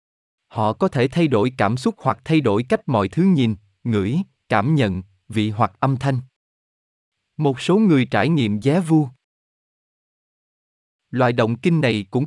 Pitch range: 110-160 Hz